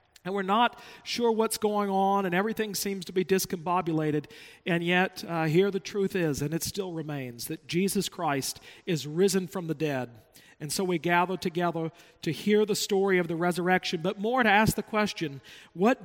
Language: English